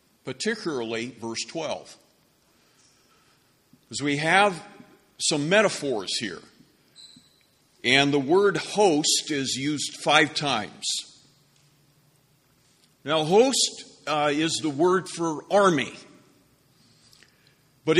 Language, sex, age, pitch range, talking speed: English, male, 50-69, 130-180 Hz, 85 wpm